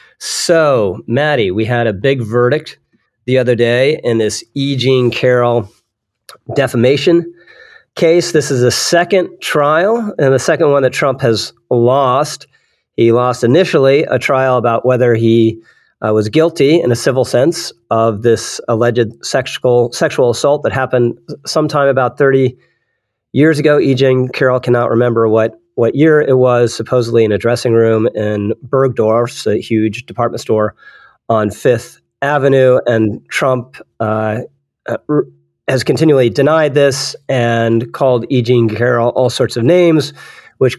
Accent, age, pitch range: American, 40-59, 115-145 Hz